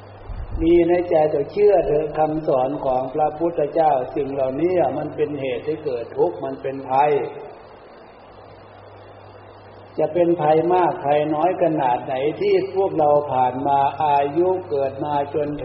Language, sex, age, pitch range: Thai, male, 60-79, 120-165 Hz